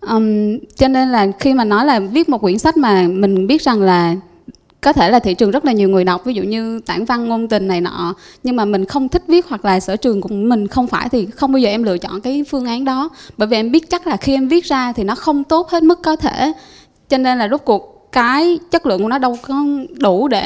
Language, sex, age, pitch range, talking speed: Vietnamese, female, 20-39, 210-285 Hz, 275 wpm